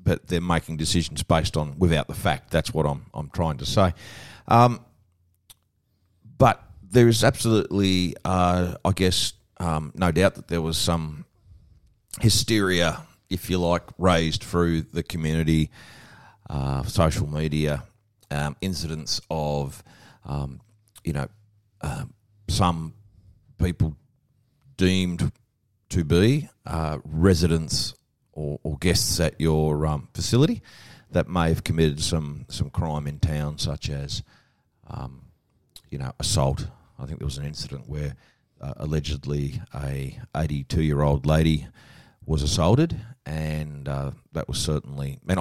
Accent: Australian